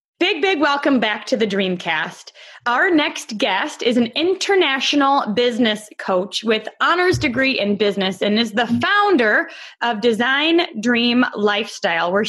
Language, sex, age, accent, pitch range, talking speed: English, female, 20-39, American, 210-280 Hz, 140 wpm